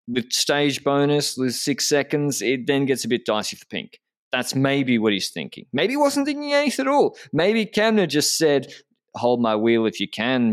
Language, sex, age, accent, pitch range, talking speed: English, male, 20-39, Australian, 100-145 Hz, 205 wpm